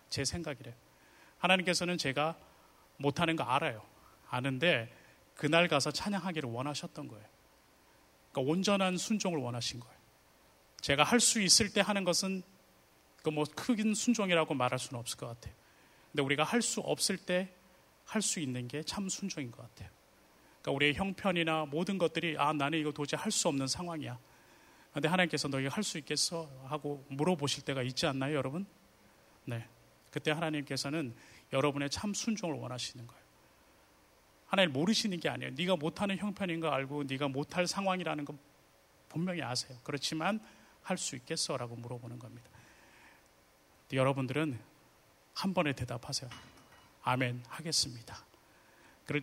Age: 30-49